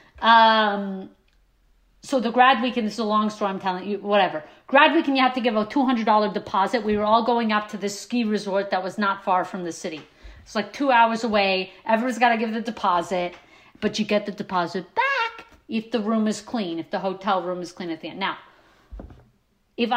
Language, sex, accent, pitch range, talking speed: English, female, American, 190-250 Hz, 215 wpm